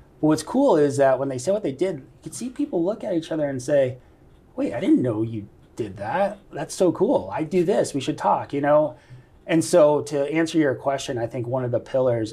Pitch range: 115-135 Hz